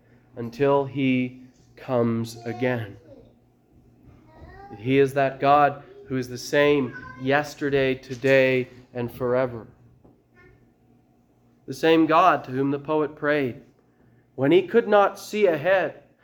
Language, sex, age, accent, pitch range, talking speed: English, male, 30-49, American, 130-195 Hz, 110 wpm